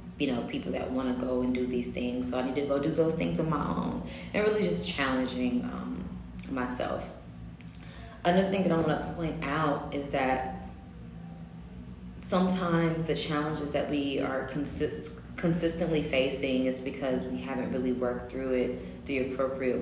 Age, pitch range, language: 20-39, 125-150 Hz, English